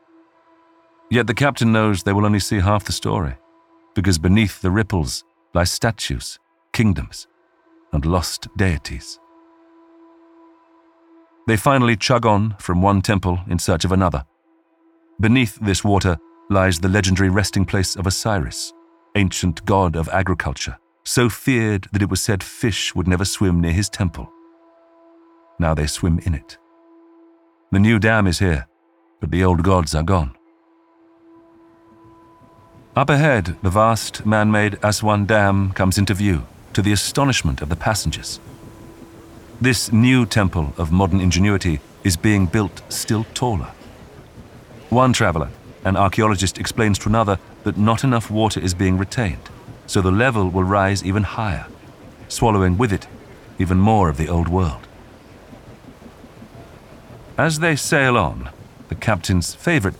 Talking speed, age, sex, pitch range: 140 wpm, 50-69, male, 95-130 Hz